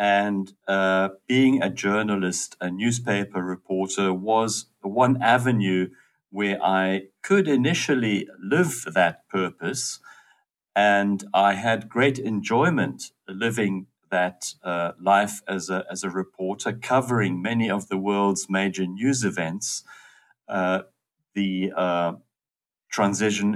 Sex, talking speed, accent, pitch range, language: male, 110 wpm, German, 95-110 Hz, English